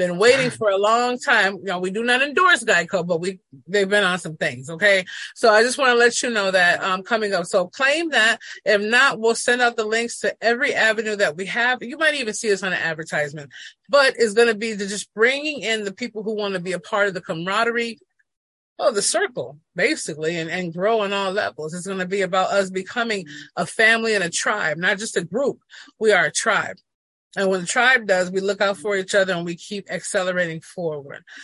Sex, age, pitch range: female, 30-49, 185-230 Hz